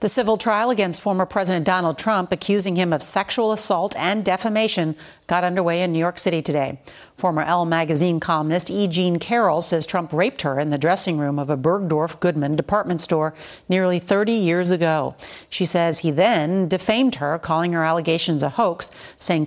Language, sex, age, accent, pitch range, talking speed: English, female, 40-59, American, 160-190 Hz, 180 wpm